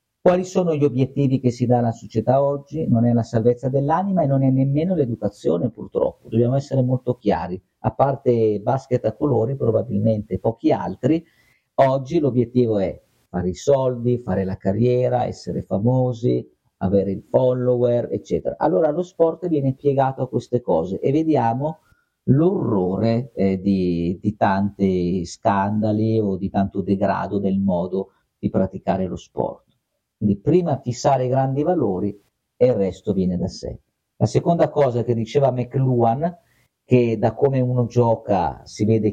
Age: 50-69